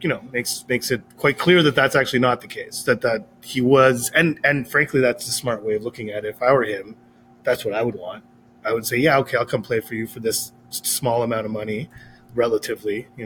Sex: male